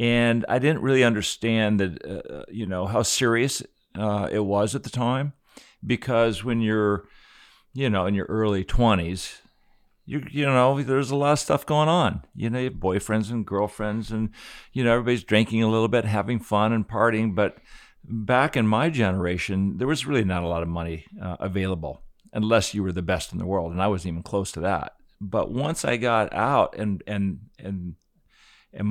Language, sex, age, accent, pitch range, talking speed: English, male, 50-69, American, 95-125 Hz, 195 wpm